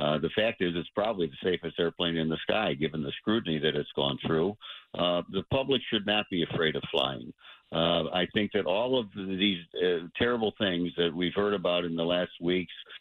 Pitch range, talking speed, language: 90-110 Hz, 210 wpm, English